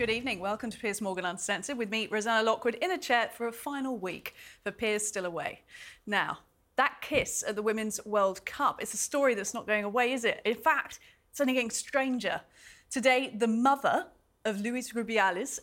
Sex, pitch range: female, 210-260 Hz